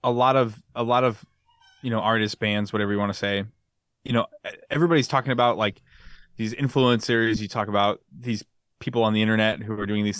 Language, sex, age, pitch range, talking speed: English, male, 20-39, 105-125 Hz, 205 wpm